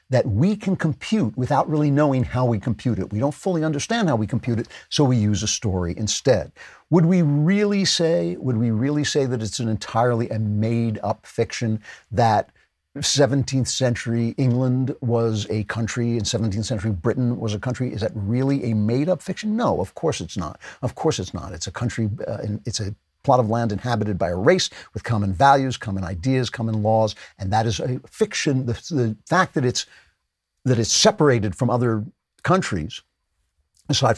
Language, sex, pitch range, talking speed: English, male, 110-140 Hz, 185 wpm